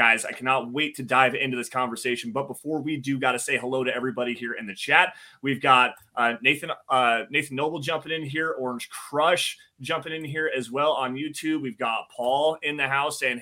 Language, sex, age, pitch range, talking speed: English, male, 30-49, 125-150 Hz, 220 wpm